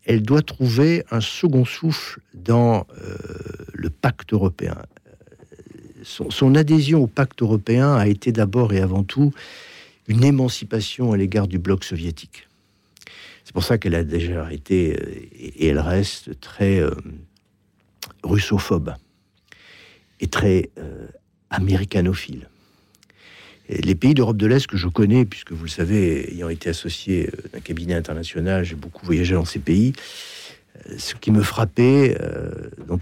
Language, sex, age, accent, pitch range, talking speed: French, male, 60-79, French, 90-115 Hz, 140 wpm